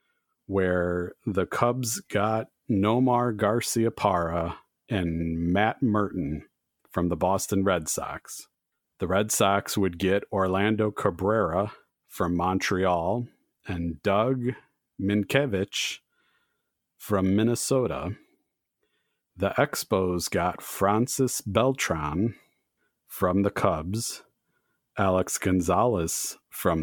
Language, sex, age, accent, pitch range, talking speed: English, male, 50-69, American, 95-120 Hz, 85 wpm